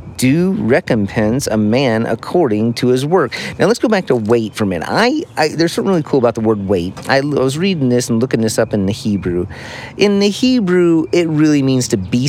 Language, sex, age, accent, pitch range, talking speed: English, male, 30-49, American, 105-140 Hz, 220 wpm